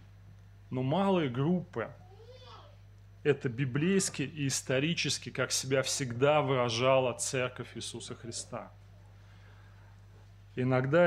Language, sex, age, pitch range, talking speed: Russian, male, 20-39, 100-135 Hz, 80 wpm